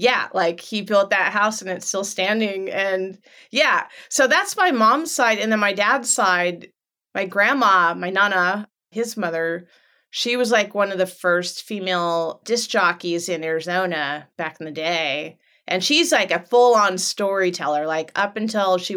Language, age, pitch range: English, 30-49, 175-225 Hz